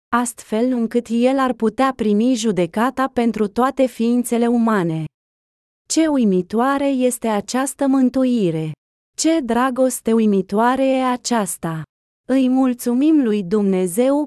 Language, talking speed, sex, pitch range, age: Romanian, 105 wpm, female, 205-255 Hz, 20-39